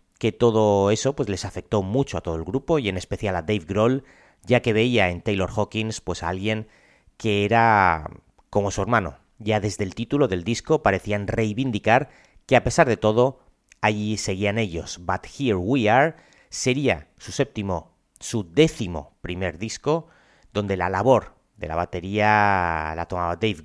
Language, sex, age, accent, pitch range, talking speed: Spanish, male, 40-59, Spanish, 95-125 Hz, 170 wpm